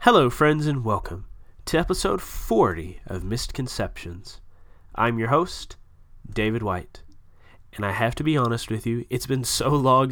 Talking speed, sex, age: 155 wpm, male, 20-39